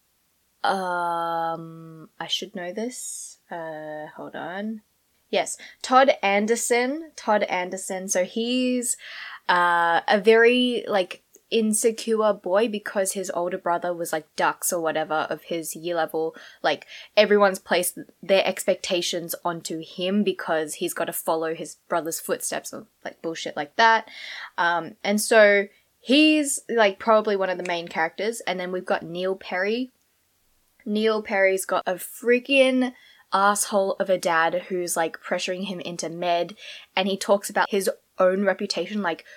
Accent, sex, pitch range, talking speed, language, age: Australian, female, 175-215 Hz, 140 wpm, English, 20-39